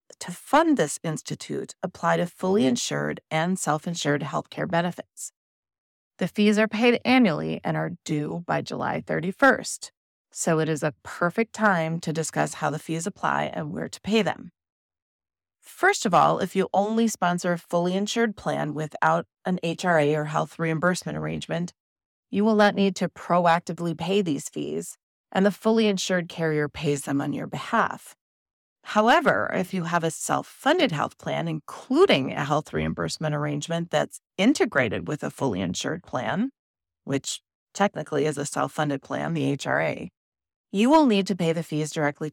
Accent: American